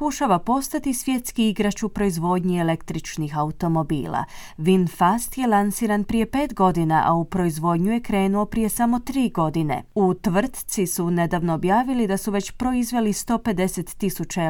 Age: 30-49